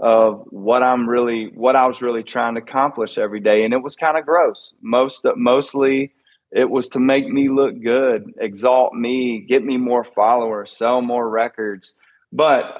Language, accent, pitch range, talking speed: English, American, 115-135 Hz, 180 wpm